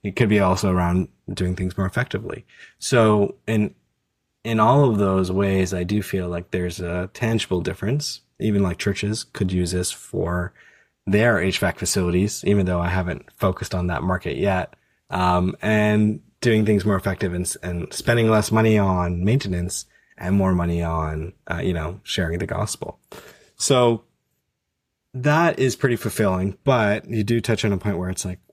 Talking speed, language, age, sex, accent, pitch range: 170 wpm, English, 20-39, male, American, 90-110 Hz